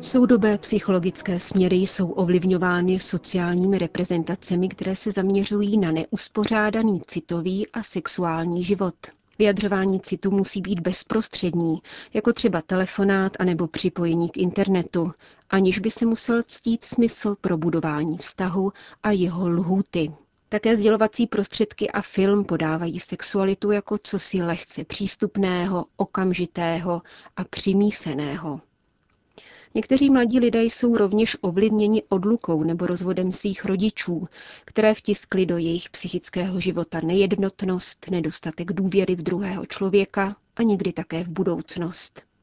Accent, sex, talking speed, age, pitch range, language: native, female, 115 wpm, 30-49, 175-210 Hz, Czech